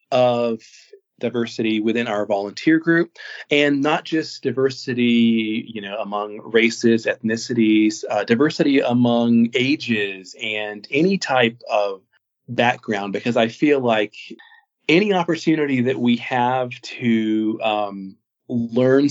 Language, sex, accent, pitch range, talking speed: English, male, American, 110-130 Hz, 115 wpm